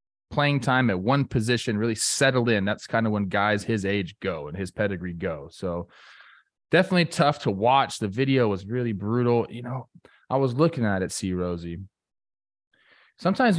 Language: English